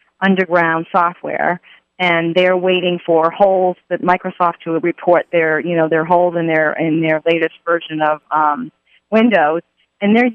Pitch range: 165-195 Hz